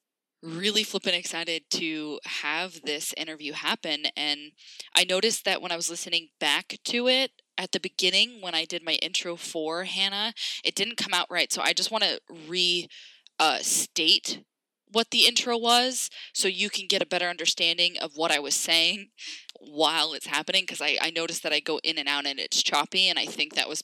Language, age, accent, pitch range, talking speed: English, 10-29, American, 160-195 Hz, 200 wpm